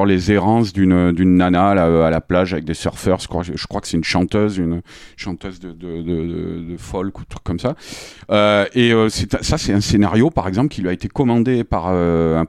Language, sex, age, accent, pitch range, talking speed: French, male, 40-59, French, 95-120 Hz, 220 wpm